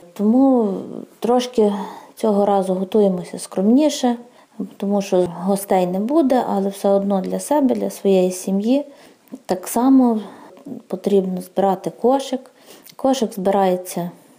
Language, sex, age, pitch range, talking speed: Ukrainian, female, 20-39, 195-235 Hz, 110 wpm